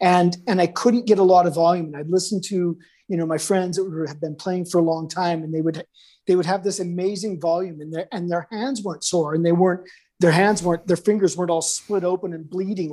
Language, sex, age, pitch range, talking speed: English, male, 40-59, 170-210 Hz, 255 wpm